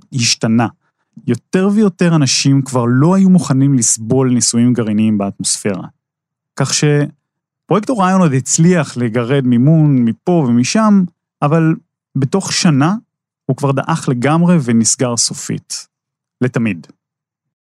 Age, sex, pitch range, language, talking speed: 30-49, male, 130-170 Hz, Hebrew, 105 wpm